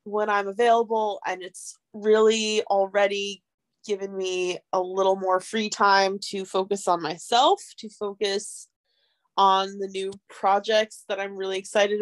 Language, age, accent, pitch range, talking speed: English, 20-39, American, 190-220 Hz, 140 wpm